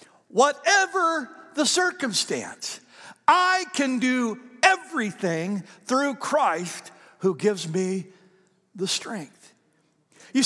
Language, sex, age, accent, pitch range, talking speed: English, male, 60-79, American, 175-245 Hz, 85 wpm